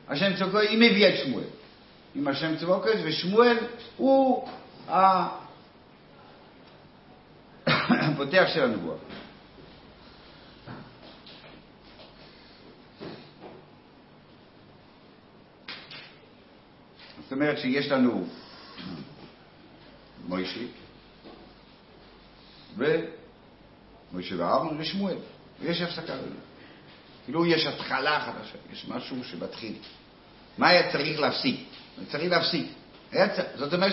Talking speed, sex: 75 wpm, male